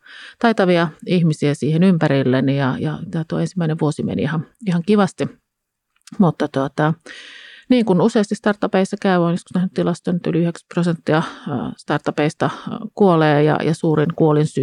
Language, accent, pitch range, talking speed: Finnish, native, 150-185 Hz, 125 wpm